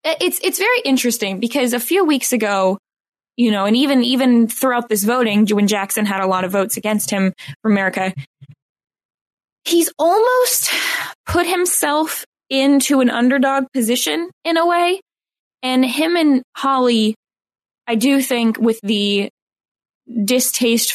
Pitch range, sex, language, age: 220-290 Hz, female, English, 10-29